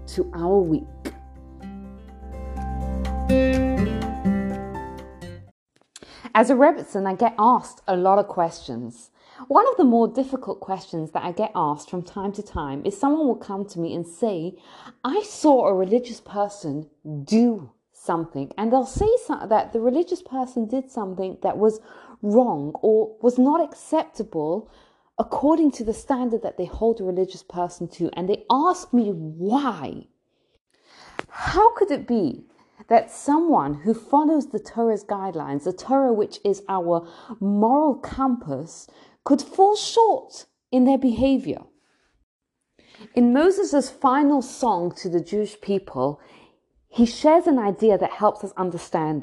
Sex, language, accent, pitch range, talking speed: female, English, British, 170-260 Hz, 140 wpm